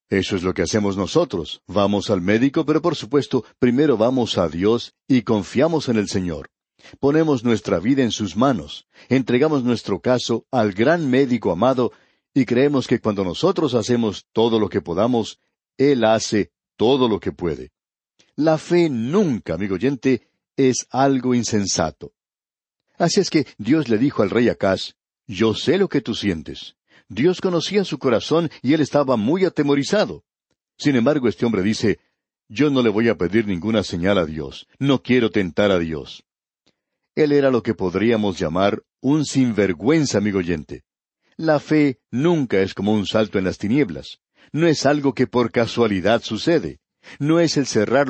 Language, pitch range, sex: Spanish, 105-145 Hz, male